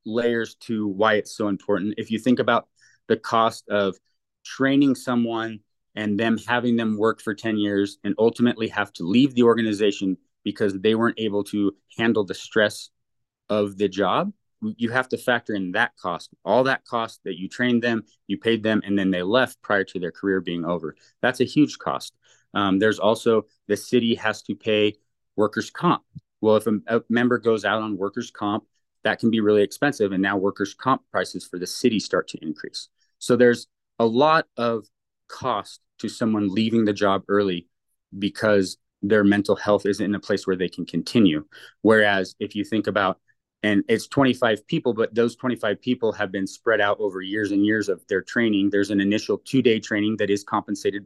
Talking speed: 195 wpm